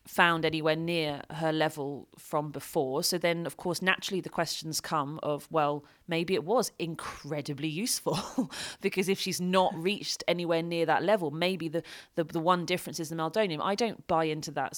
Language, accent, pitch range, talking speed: English, British, 155-210 Hz, 185 wpm